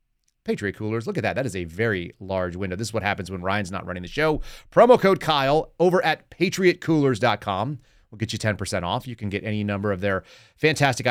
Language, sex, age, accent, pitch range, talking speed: English, male, 30-49, American, 100-130 Hz, 215 wpm